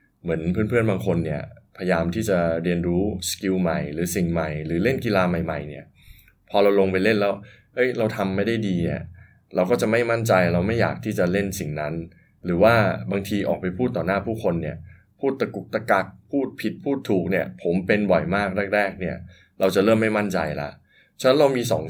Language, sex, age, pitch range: Thai, male, 20-39, 85-110 Hz